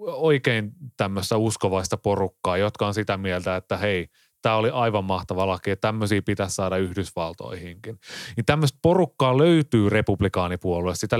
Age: 30-49